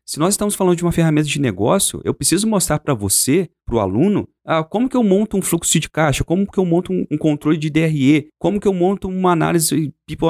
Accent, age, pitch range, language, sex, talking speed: Brazilian, 40-59, 130-180 Hz, Portuguese, male, 245 wpm